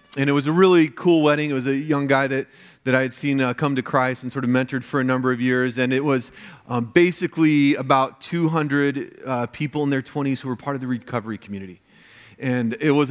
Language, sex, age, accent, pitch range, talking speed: English, male, 30-49, American, 125-140 Hz, 240 wpm